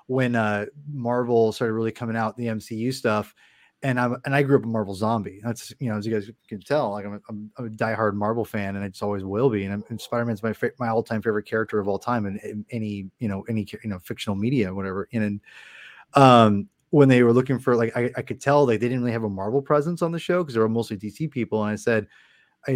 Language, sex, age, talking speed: English, male, 20-39, 260 wpm